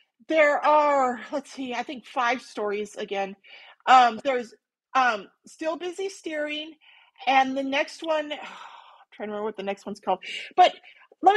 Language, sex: English, female